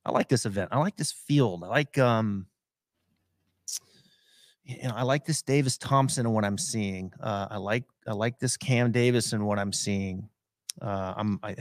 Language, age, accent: English, 30-49, American